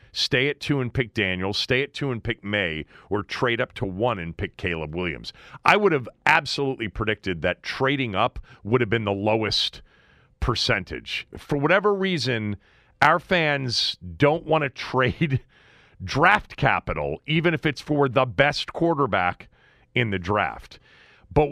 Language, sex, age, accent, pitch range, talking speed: English, male, 40-59, American, 110-150 Hz, 160 wpm